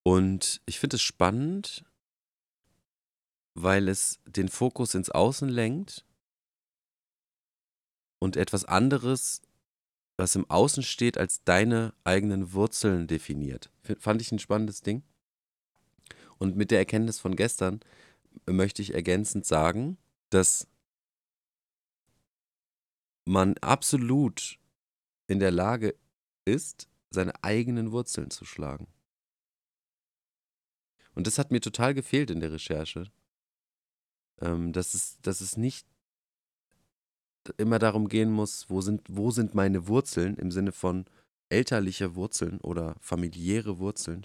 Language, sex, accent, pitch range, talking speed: German, male, German, 90-110 Hz, 110 wpm